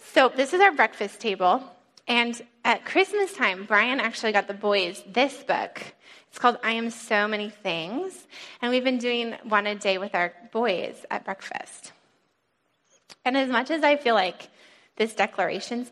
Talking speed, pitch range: 170 wpm, 195-245 Hz